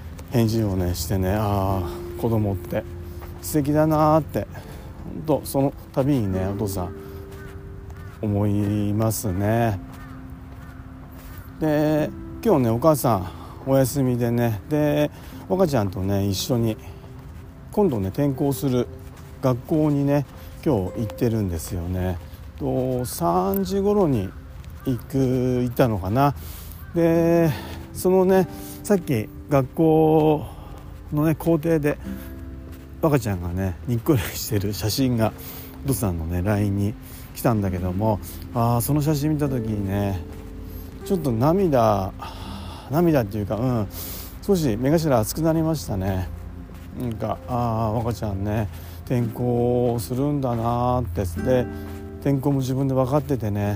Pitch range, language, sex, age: 95-140 Hz, Japanese, male, 40-59